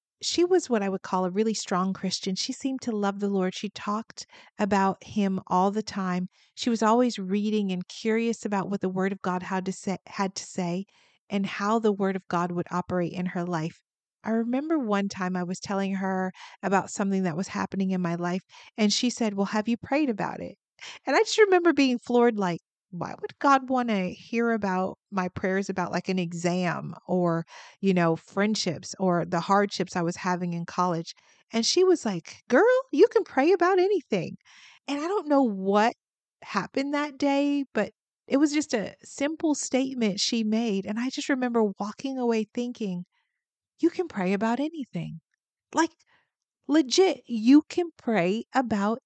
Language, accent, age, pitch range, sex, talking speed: English, American, 40-59, 190-260 Hz, female, 185 wpm